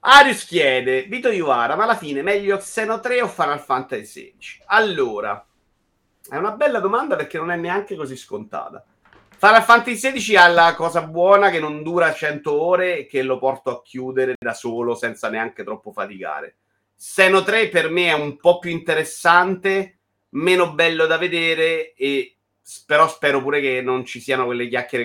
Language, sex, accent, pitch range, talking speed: Italian, male, native, 120-175 Hz, 170 wpm